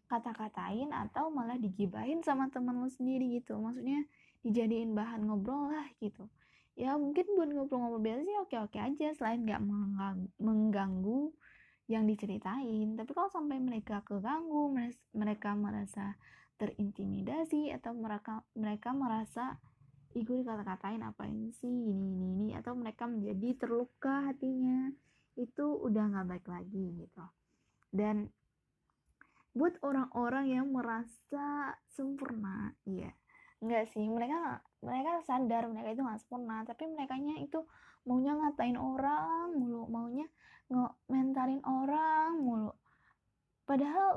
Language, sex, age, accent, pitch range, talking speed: Indonesian, female, 10-29, native, 215-280 Hz, 115 wpm